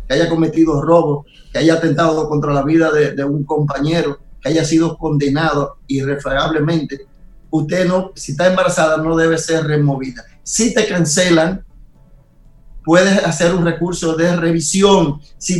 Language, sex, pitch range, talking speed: Spanish, male, 155-185 Hz, 145 wpm